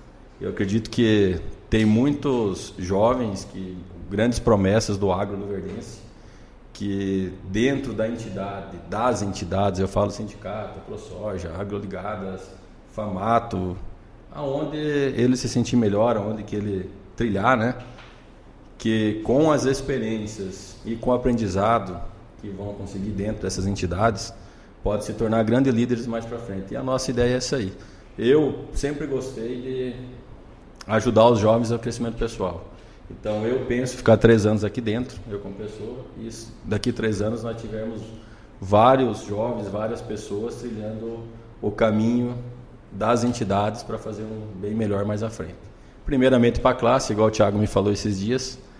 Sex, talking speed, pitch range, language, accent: male, 145 wpm, 100-125 Hz, Portuguese, Brazilian